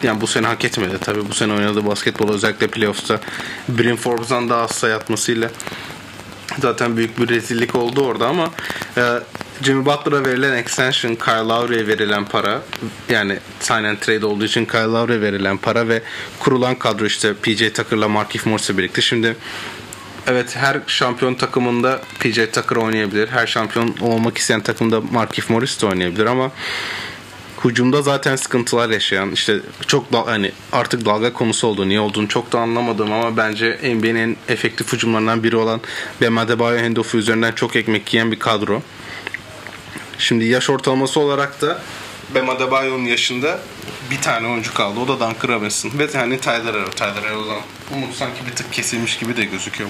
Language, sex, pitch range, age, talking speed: Turkish, male, 110-125 Hz, 30-49, 160 wpm